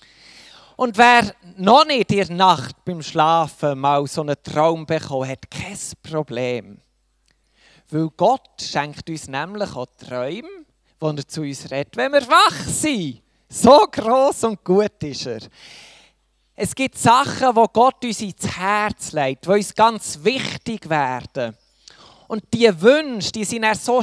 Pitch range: 150-220 Hz